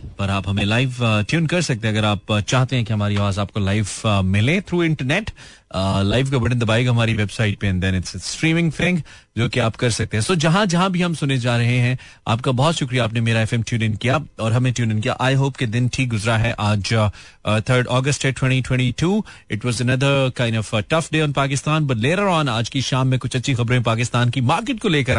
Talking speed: 140 wpm